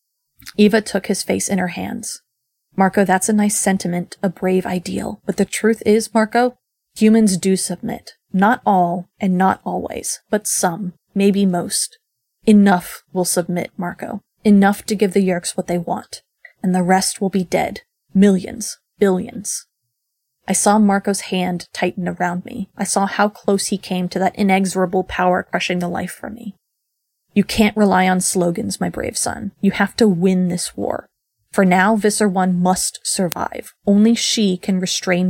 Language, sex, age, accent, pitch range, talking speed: English, female, 20-39, American, 185-210 Hz, 165 wpm